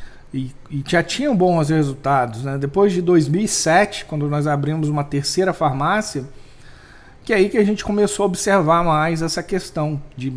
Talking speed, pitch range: 170 wpm, 145-175 Hz